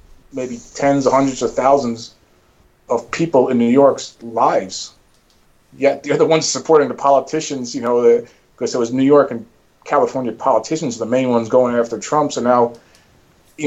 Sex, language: male, English